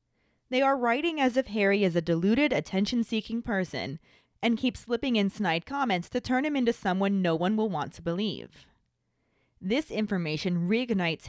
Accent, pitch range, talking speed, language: American, 175-235 Hz, 165 wpm, English